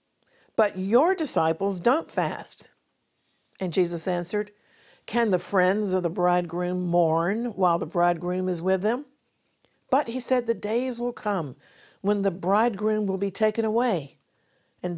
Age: 50-69